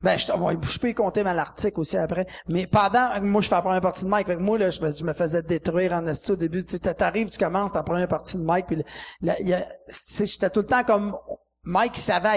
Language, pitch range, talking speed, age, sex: French, 180-265 Hz, 265 wpm, 30-49, male